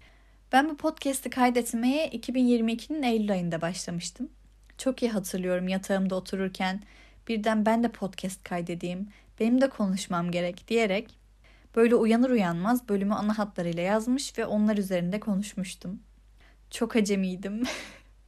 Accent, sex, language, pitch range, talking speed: native, female, Turkish, 195-250 Hz, 120 wpm